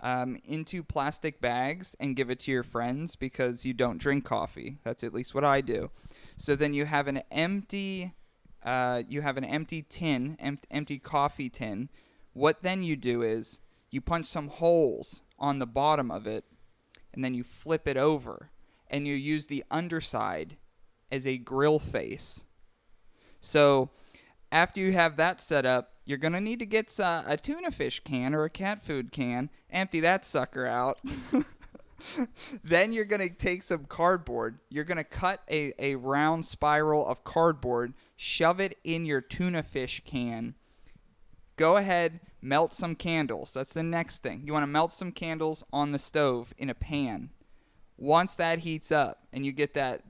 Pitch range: 130-165 Hz